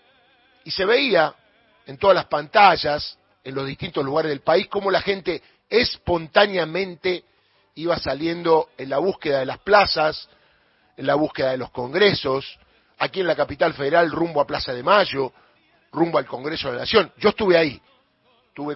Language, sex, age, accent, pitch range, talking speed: Spanish, male, 40-59, Argentinian, 135-185 Hz, 165 wpm